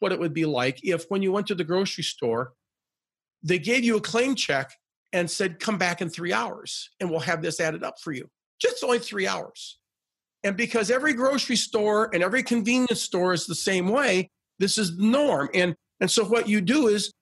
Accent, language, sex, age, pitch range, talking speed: American, English, male, 50-69, 175-230 Hz, 215 wpm